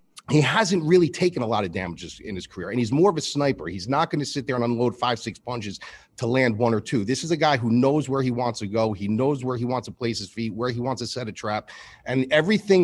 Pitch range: 115-140 Hz